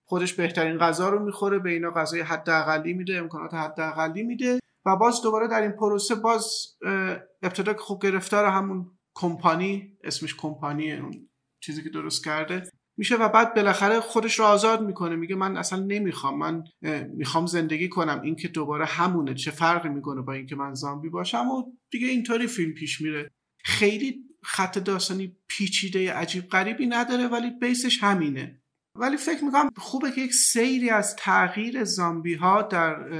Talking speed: 160 wpm